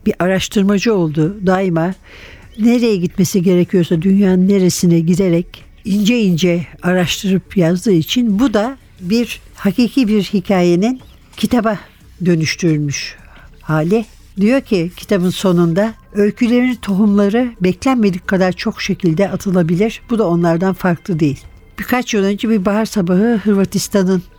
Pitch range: 170-210 Hz